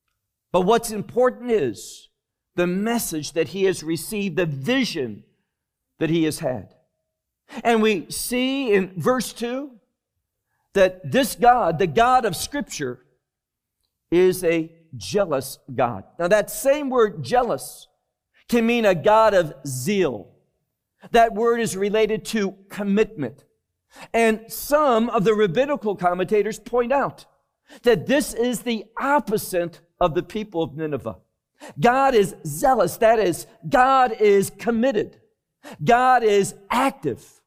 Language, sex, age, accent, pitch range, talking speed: English, male, 50-69, American, 175-240 Hz, 130 wpm